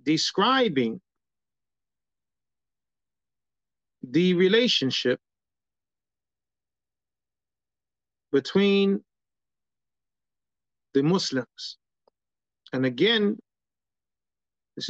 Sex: male